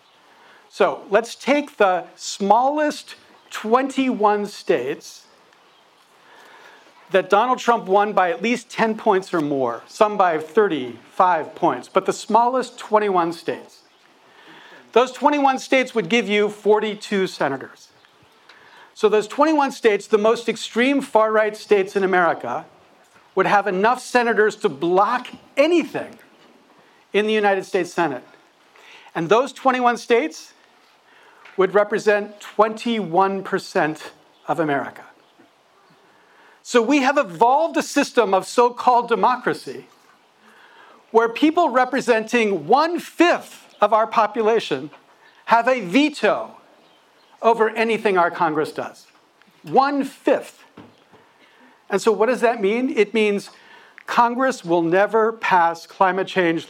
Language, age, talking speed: English, 50-69, 110 wpm